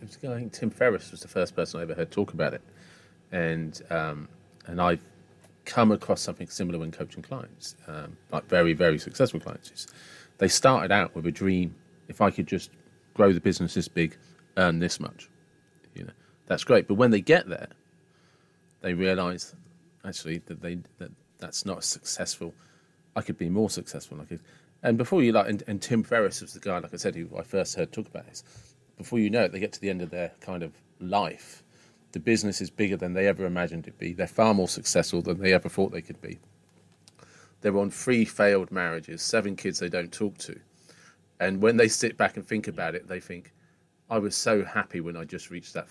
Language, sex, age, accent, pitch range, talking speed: English, male, 40-59, British, 85-105 Hz, 210 wpm